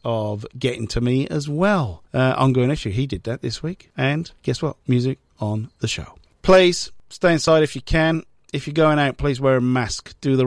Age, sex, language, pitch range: 40-59, male, English, 125-180 Hz